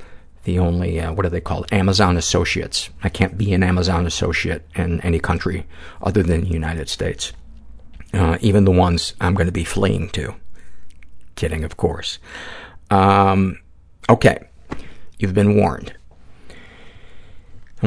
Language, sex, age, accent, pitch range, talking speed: English, male, 50-69, American, 85-105 Hz, 140 wpm